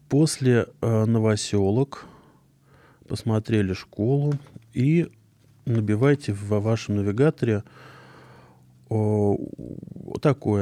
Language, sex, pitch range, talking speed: Russian, male, 105-130 Hz, 55 wpm